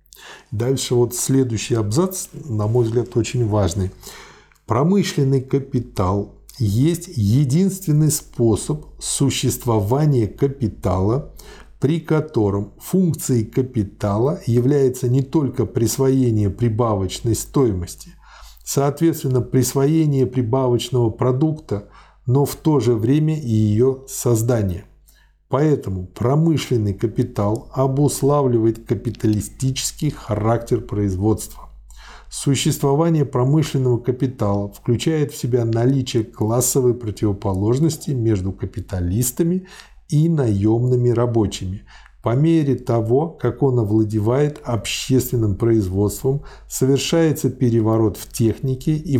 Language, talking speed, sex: Russian, 90 wpm, male